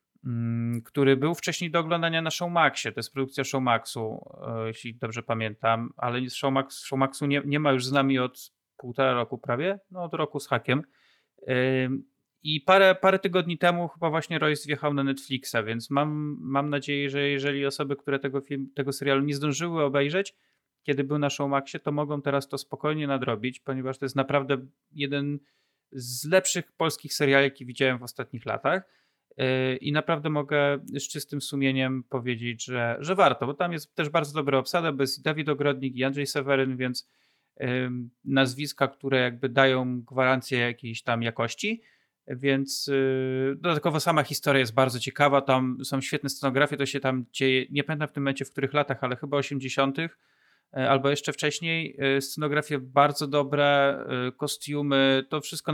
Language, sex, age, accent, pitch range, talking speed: Polish, male, 30-49, native, 130-150 Hz, 165 wpm